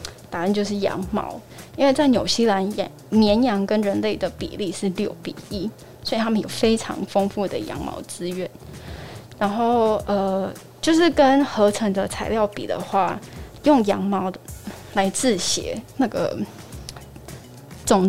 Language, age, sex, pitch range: Chinese, 10-29, female, 190-215 Hz